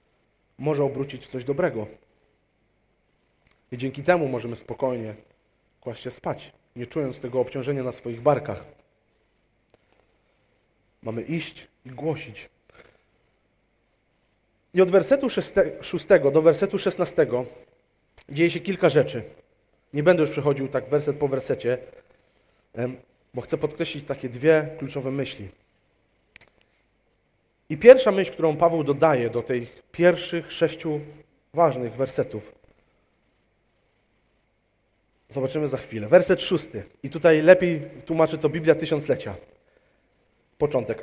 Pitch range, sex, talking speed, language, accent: 125-170 Hz, male, 110 wpm, Polish, native